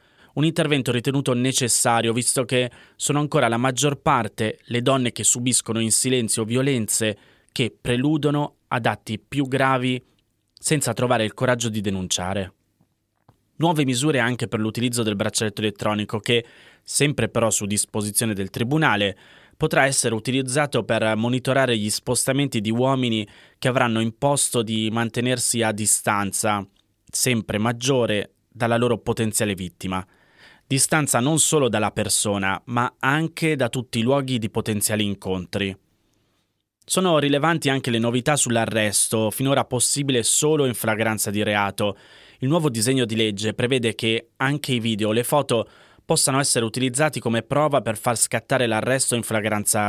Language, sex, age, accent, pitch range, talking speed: Italian, male, 20-39, native, 105-135 Hz, 140 wpm